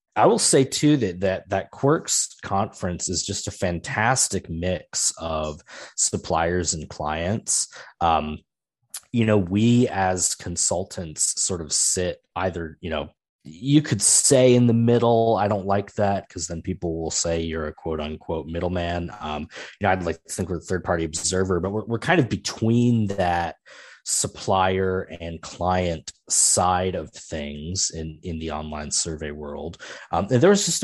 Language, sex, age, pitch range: English, male, 20-39, 85-105 Hz